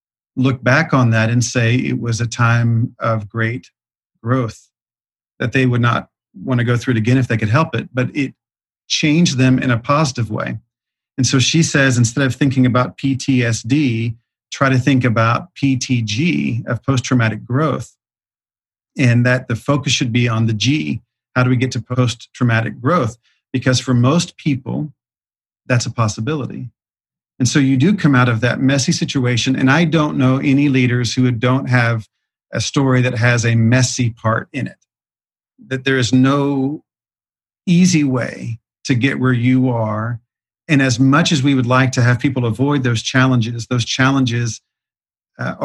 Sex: male